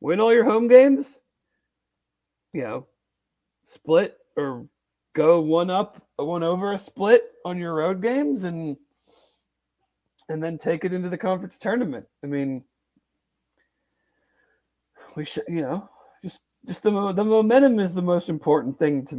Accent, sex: American, male